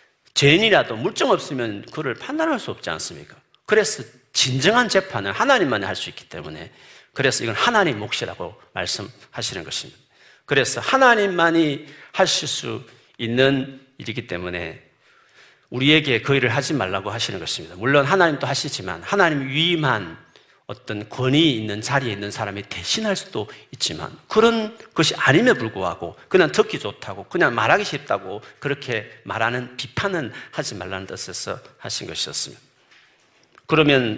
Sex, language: male, Korean